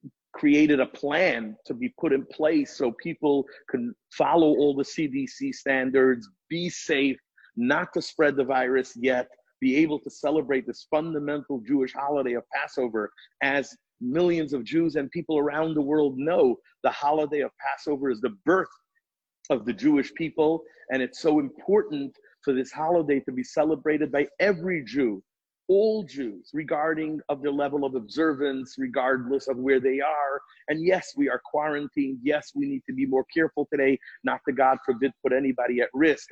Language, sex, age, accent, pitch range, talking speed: English, male, 50-69, American, 135-175 Hz, 170 wpm